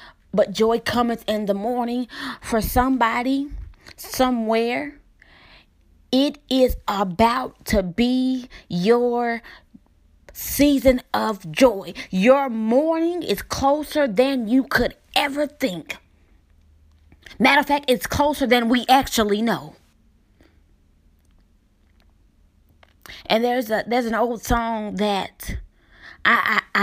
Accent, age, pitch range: American, 20-39, 155-245 Hz